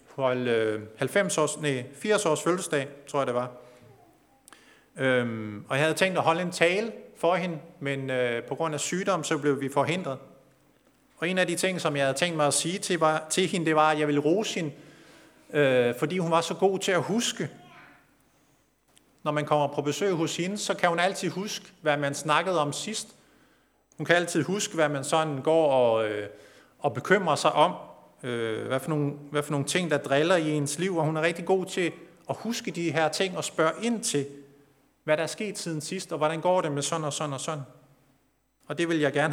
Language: Danish